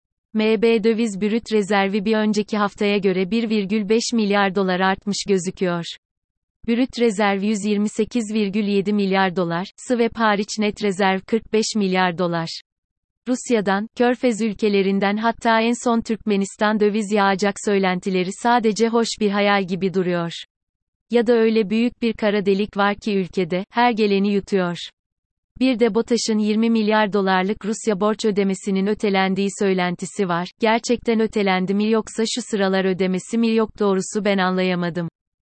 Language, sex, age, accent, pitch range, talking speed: Turkish, female, 30-49, native, 190-225 Hz, 130 wpm